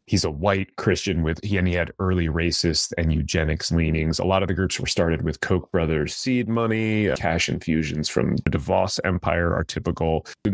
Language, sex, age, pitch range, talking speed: English, male, 30-49, 85-105 Hz, 200 wpm